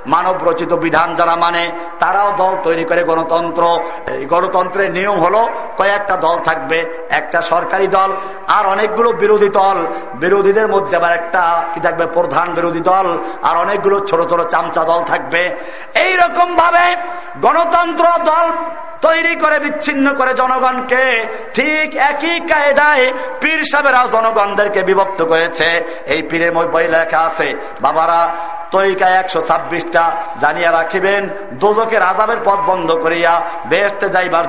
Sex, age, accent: male, 50-69, native